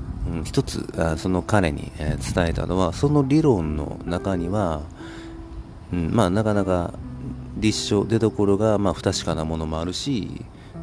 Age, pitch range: 40-59, 85-120 Hz